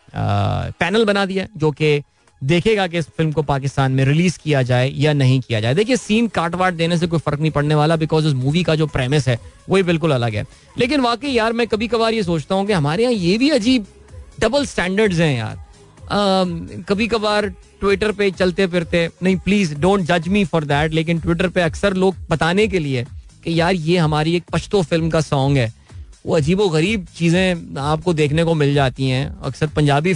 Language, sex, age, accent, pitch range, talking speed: Hindi, male, 30-49, native, 135-185 Hz, 205 wpm